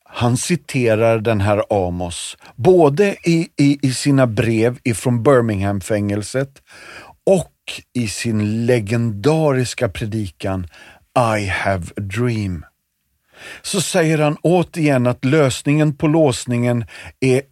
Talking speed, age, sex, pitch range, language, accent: 115 wpm, 40-59, male, 100-145 Hz, Swedish, native